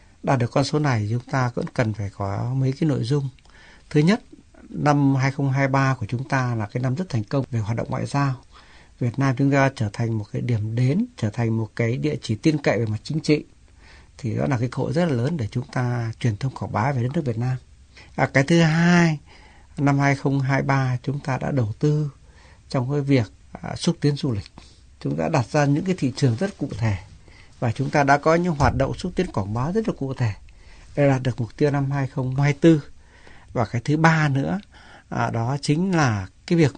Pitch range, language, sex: 115-145 Hz, Vietnamese, male